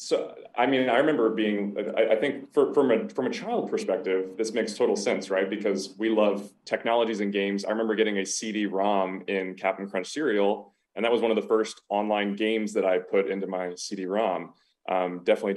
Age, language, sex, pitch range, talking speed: 20-39, English, male, 95-115 Hz, 205 wpm